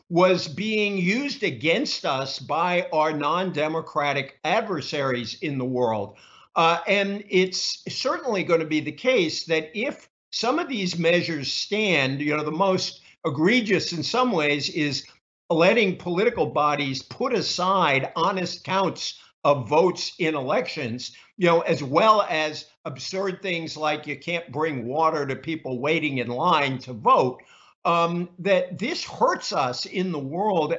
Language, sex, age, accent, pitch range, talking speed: English, male, 50-69, American, 150-195 Hz, 145 wpm